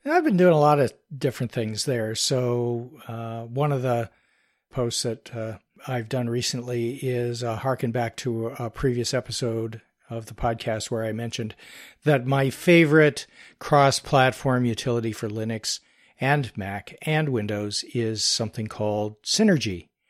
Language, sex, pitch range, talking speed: English, male, 115-145 Hz, 145 wpm